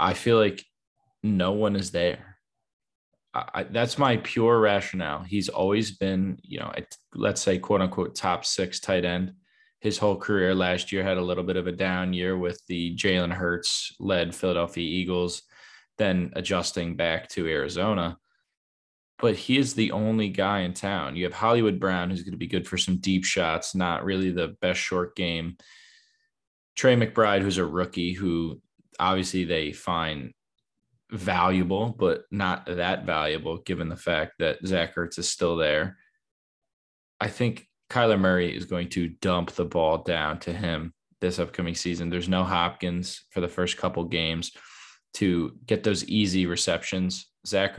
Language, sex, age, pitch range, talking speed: English, male, 20-39, 85-100 Hz, 160 wpm